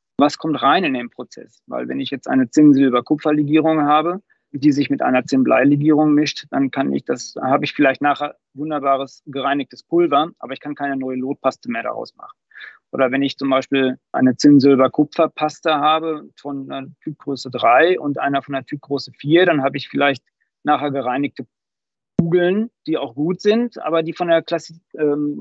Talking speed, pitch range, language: 180 wpm, 135-175 Hz, German